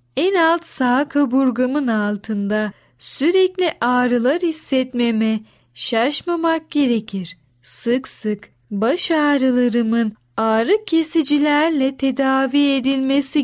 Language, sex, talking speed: Turkish, female, 80 wpm